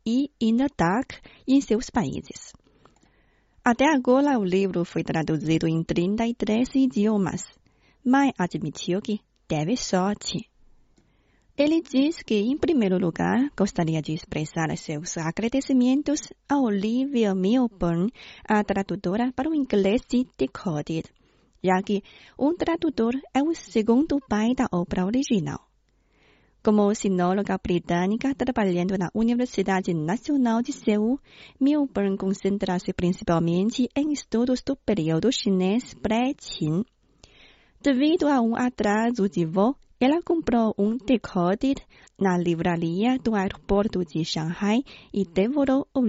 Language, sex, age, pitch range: Chinese, female, 30-49, 185-260 Hz